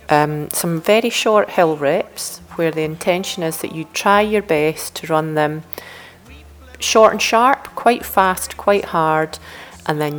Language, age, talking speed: English, 30-49, 160 wpm